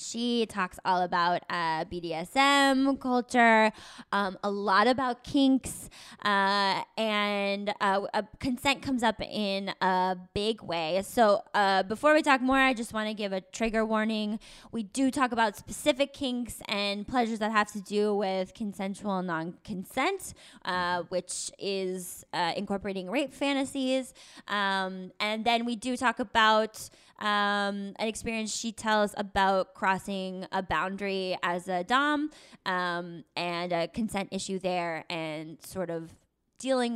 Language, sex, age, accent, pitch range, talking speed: English, female, 20-39, American, 190-245 Hz, 145 wpm